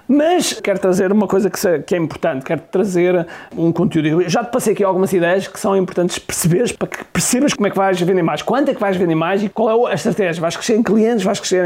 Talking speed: 255 wpm